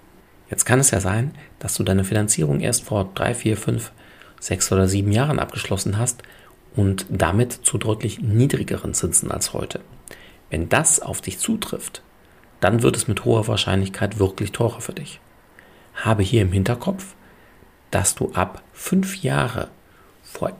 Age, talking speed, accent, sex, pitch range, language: 40-59, 155 wpm, German, male, 95-130 Hz, German